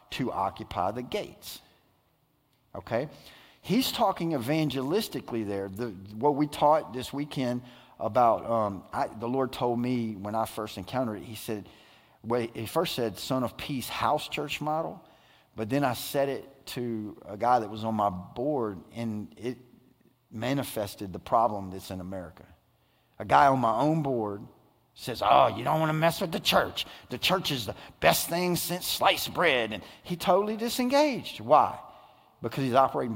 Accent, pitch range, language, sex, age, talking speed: American, 105-140 Hz, English, male, 50-69, 170 wpm